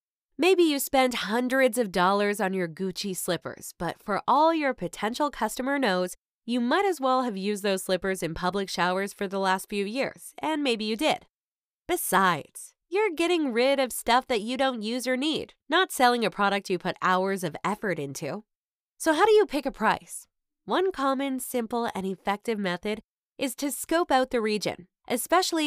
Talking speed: 185 wpm